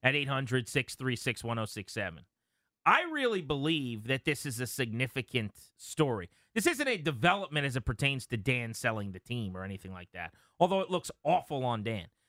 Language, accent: English, American